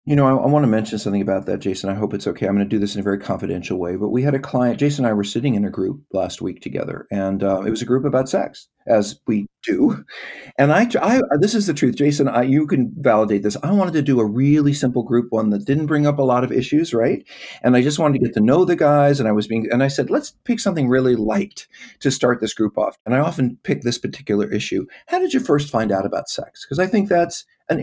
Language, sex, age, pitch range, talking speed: English, male, 40-59, 110-140 Hz, 280 wpm